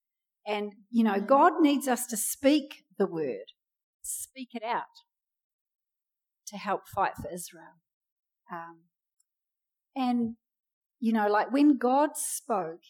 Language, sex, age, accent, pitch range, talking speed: English, female, 40-59, Australian, 185-235 Hz, 120 wpm